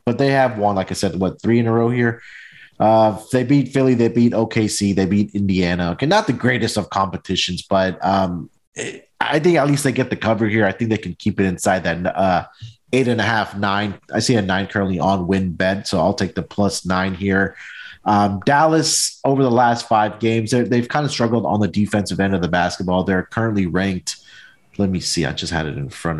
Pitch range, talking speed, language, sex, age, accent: 95-120 Hz, 225 wpm, English, male, 30-49, American